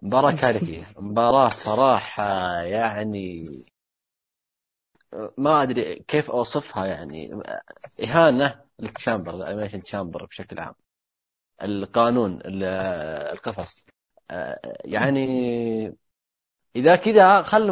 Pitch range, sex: 100-150 Hz, male